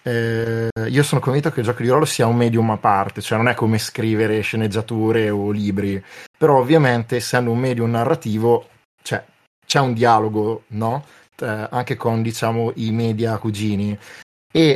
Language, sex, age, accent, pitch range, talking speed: Italian, male, 20-39, native, 110-125 Hz, 165 wpm